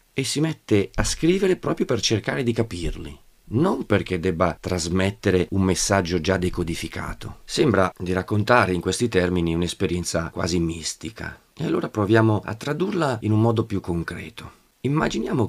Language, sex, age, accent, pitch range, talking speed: Italian, male, 40-59, native, 90-120 Hz, 145 wpm